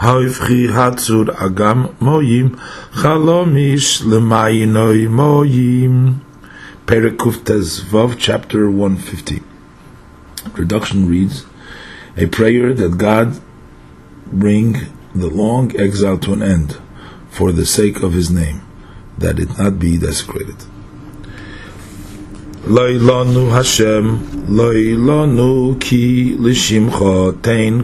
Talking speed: 90 wpm